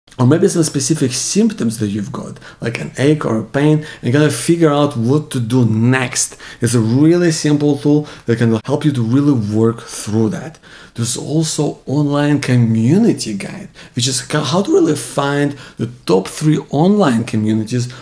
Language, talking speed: English, 175 wpm